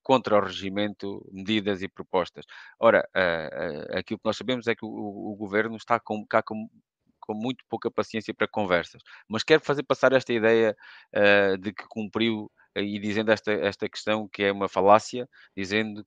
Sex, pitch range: male, 100-115 Hz